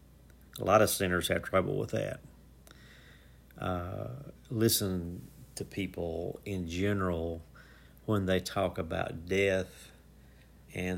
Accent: American